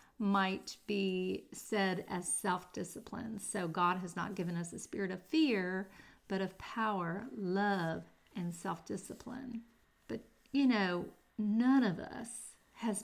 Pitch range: 185-225 Hz